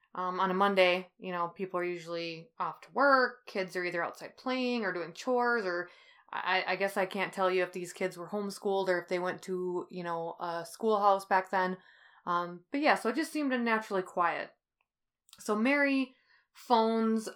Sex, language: female, English